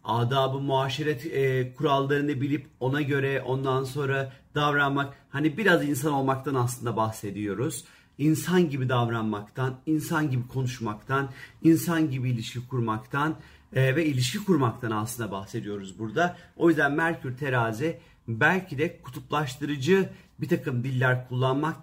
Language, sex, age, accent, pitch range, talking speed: Turkish, male, 40-59, native, 125-160 Hz, 120 wpm